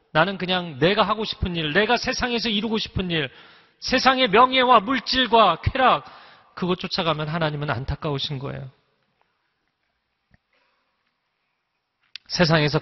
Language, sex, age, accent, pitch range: Korean, male, 40-59, native, 125-165 Hz